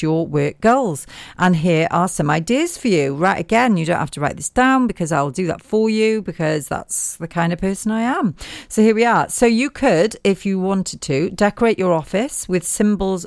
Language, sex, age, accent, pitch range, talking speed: English, female, 40-59, British, 160-195 Hz, 220 wpm